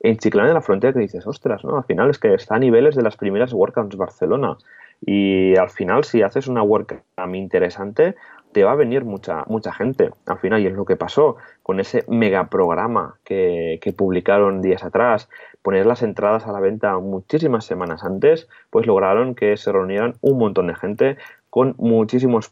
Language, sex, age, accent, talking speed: Spanish, male, 20-39, Spanish, 190 wpm